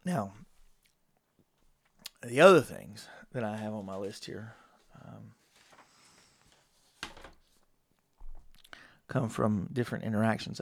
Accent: American